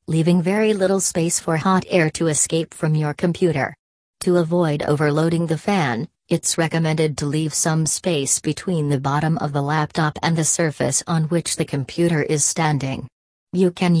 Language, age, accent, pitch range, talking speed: English, 40-59, American, 150-175 Hz, 170 wpm